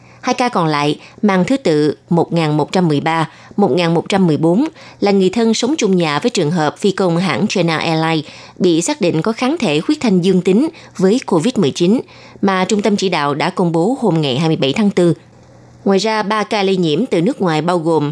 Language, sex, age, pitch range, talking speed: Vietnamese, female, 20-39, 155-210 Hz, 195 wpm